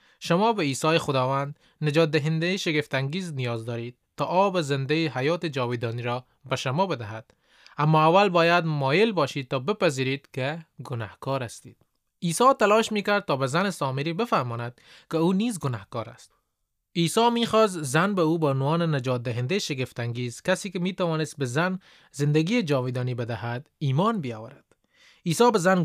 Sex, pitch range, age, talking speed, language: male, 135-185 Hz, 20-39, 150 wpm, Persian